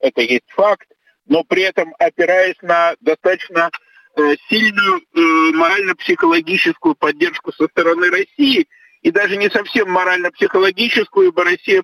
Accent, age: native, 50-69